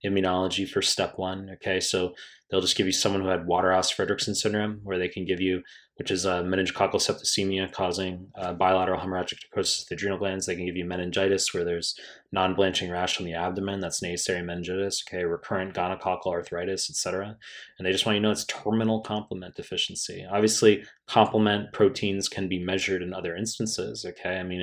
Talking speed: 195 wpm